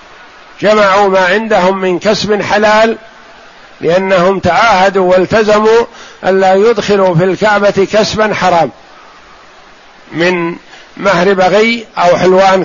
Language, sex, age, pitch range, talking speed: Arabic, male, 50-69, 180-205 Hz, 95 wpm